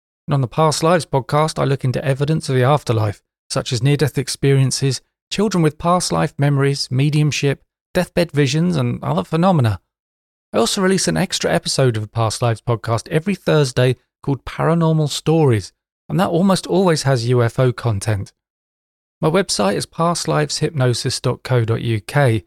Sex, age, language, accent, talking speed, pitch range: male, 30-49, English, British, 145 wpm, 120-160 Hz